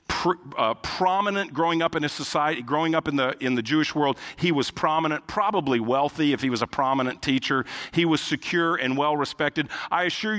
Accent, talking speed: American, 195 wpm